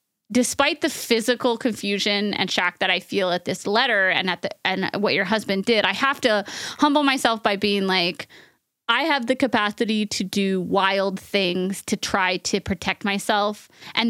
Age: 20-39